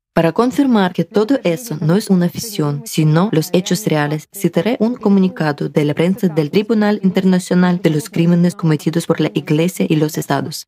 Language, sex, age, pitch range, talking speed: Spanish, female, 20-39, 160-195 Hz, 180 wpm